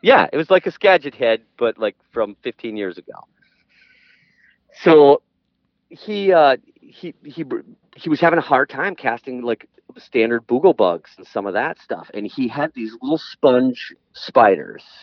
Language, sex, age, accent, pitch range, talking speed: English, male, 40-59, American, 110-135 Hz, 165 wpm